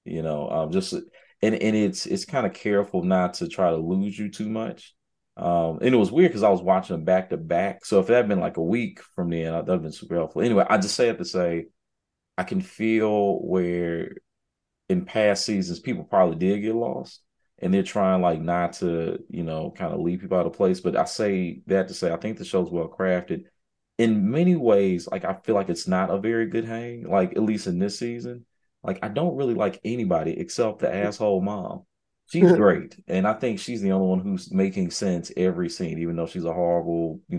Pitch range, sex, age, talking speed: 90-120 Hz, male, 30-49, 230 wpm